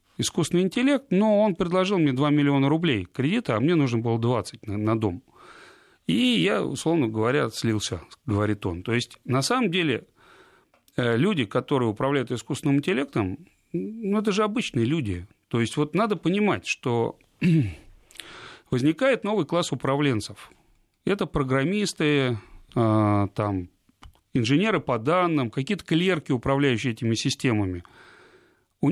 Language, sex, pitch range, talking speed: Russian, male, 110-165 Hz, 125 wpm